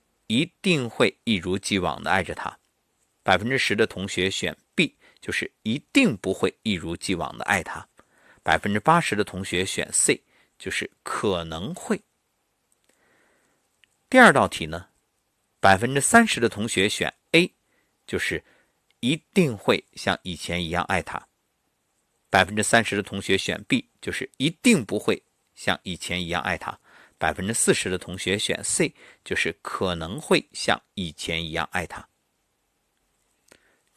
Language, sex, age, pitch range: Chinese, male, 50-69, 90-140 Hz